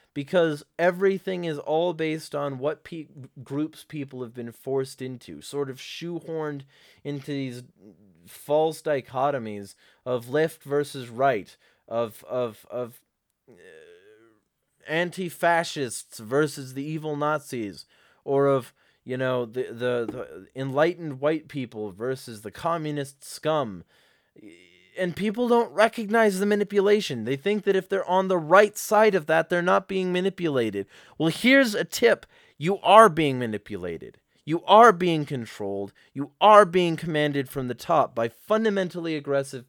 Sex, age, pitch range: male, 20-39, 130-175 Hz